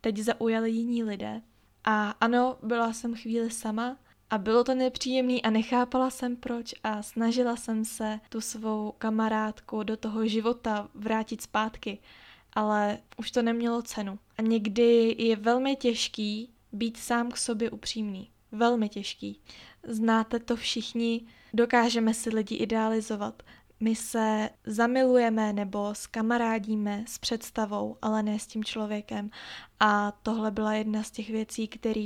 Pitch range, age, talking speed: 215-235 Hz, 10-29, 140 wpm